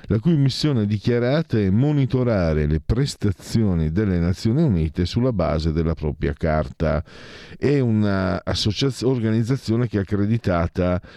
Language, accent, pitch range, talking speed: Italian, native, 85-110 Hz, 115 wpm